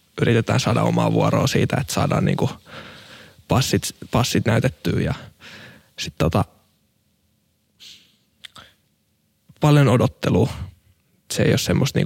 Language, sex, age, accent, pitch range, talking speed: Finnish, male, 20-39, native, 115-140 Hz, 100 wpm